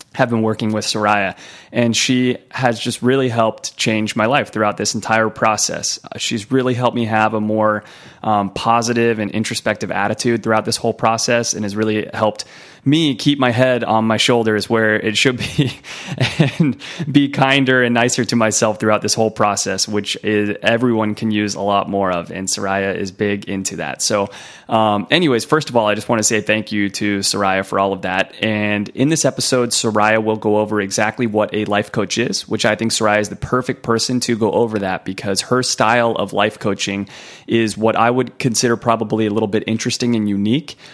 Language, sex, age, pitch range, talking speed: English, male, 20-39, 105-120 Hz, 200 wpm